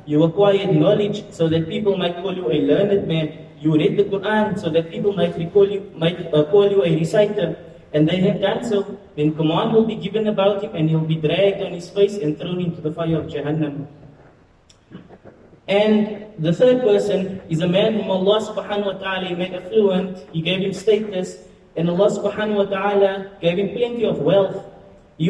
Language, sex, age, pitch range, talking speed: English, male, 30-49, 165-200 Hz, 195 wpm